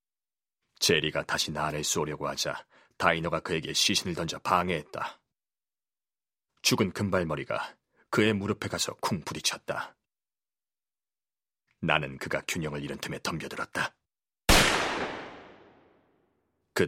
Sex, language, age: male, Korean, 40-59